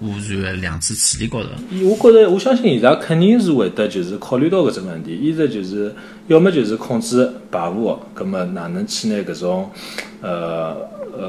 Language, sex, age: Chinese, male, 30-49